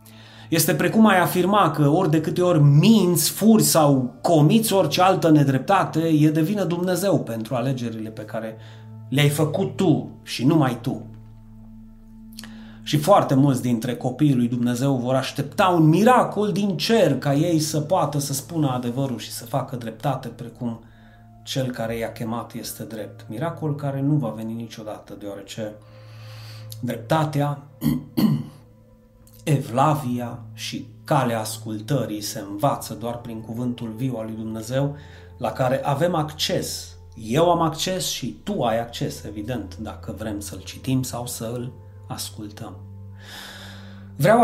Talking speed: 140 wpm